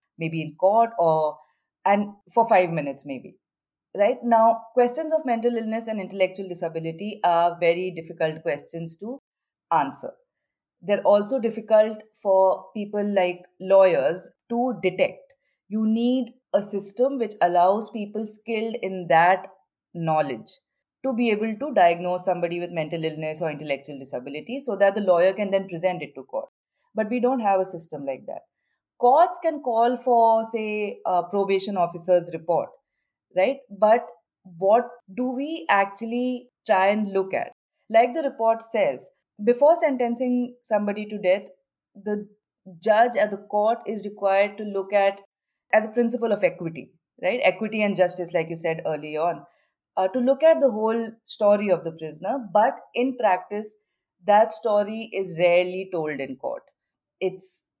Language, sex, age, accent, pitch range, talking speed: English, female, 30-49, Indian, 180-230 Hz, 155 wpm